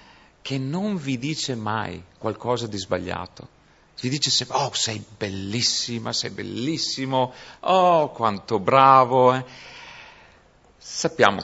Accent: Italian